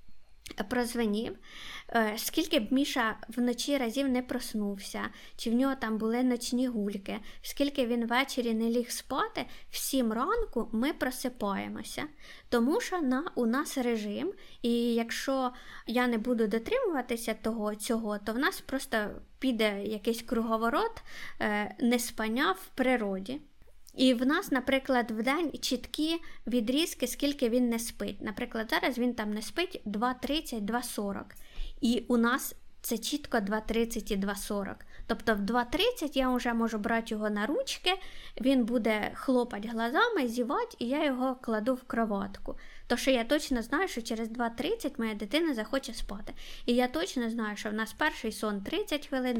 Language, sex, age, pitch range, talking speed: Ukrainian, female, 20-39, 225-270 Hz, 145 wpm